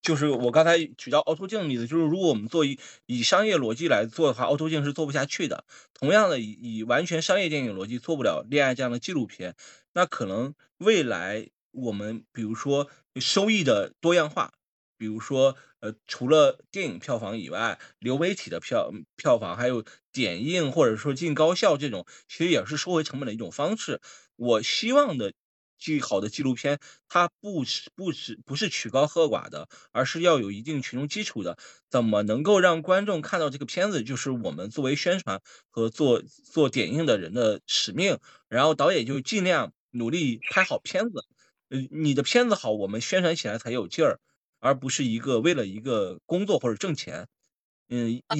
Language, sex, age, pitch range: Chinese, male, 20-39, 125-175 Hz